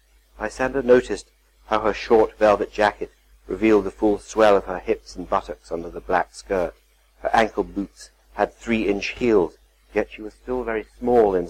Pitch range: 95-125 Hz